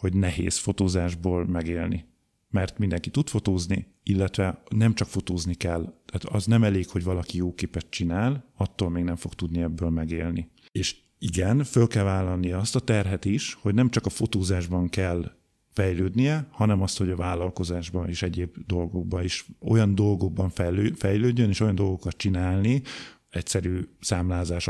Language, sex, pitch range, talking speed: Hungarian, male, 90-105 Hz, 155 wpm